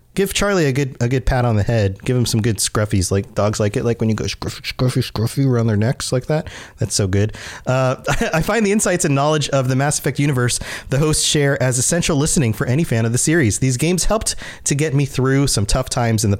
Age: 30-49